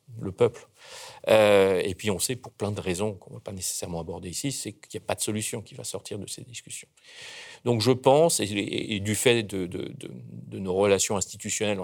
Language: French